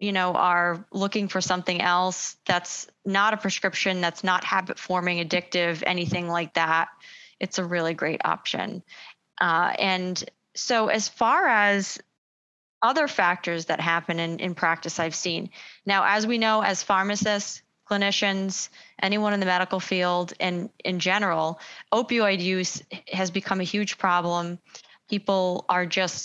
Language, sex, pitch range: English, female, 175-200 Hz